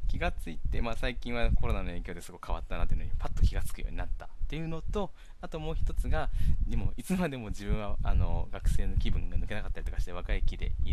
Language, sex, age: Japanese, male, 20-39